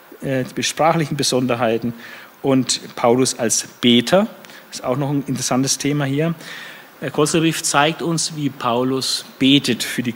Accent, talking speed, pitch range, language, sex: German, 135 wpm, 120-155 Hz, German, male